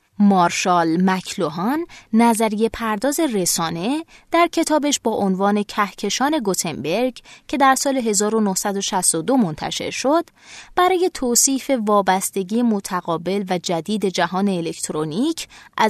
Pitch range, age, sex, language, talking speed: 180-255 Hz, 20-39, female, Persian, 95 wpm